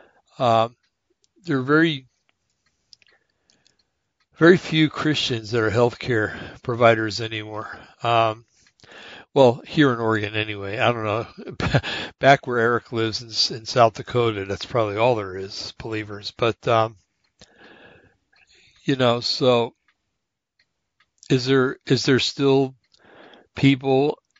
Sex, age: male, 60-79